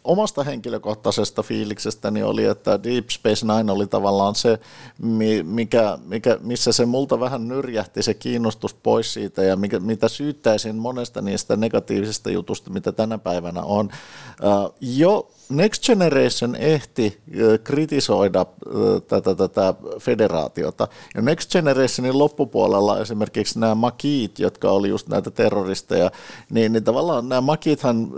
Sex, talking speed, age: male, 130 wpm, 50-69